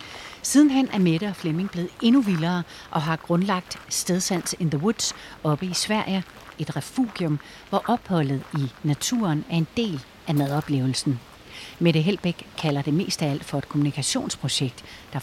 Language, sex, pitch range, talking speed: Danish, female, 145-195 Hz, 160 wpm